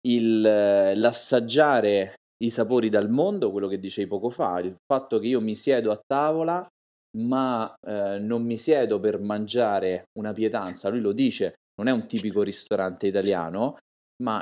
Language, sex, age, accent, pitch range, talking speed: Italian, male, 30-49, native, 105-135 Hz, 160 wpm